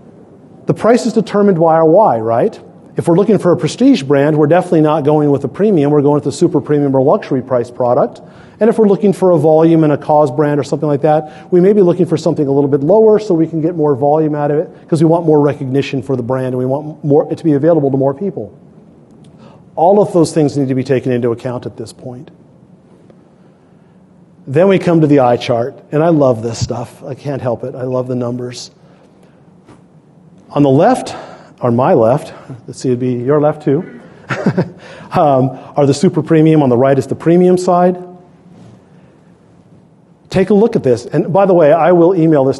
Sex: male